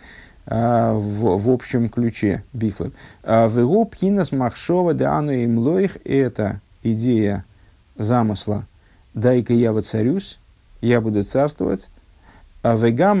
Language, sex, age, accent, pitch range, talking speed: Russian, male, 50-69, native, 110-135 Hz, 95 wpm